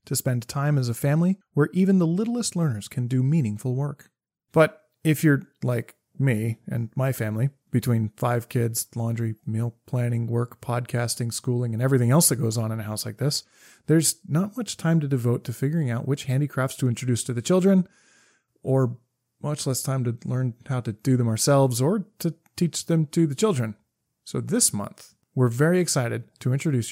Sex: male